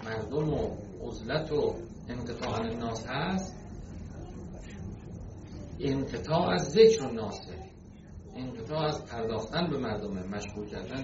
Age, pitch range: 50-69, 95-135 Hz